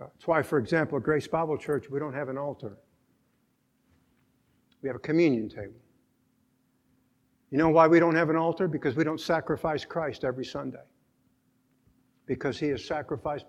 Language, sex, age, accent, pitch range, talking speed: English, male, 60-79, American, 130-160 Hz, 165 wpm